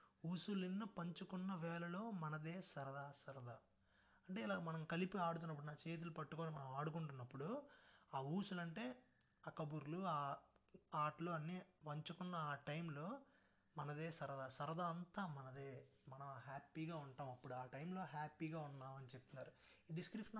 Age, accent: 20-39, native